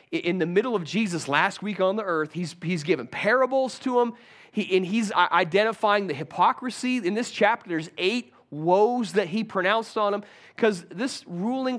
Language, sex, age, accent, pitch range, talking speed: English, male, 30-49, American, 160-215 Hz, 185 wpm